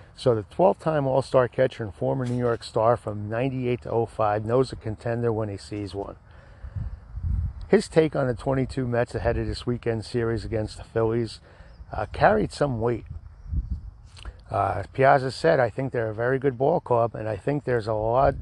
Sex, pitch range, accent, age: male, 110-130 Hz, American, 50-69